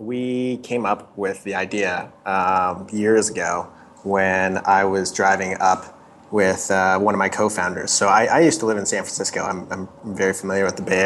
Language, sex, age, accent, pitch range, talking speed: English, male, 30-49, American, 95-110 Hz, 195 wpm